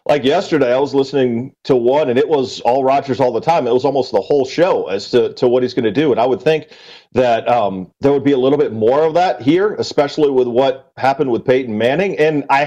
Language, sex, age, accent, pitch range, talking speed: English, male, 40-59, American, 140-180 Hz, 255 wpm